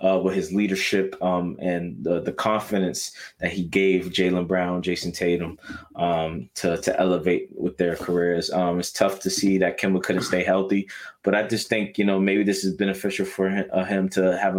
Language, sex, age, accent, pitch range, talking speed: English, male, 20-39, American, 90-100 Hz, 200 wpm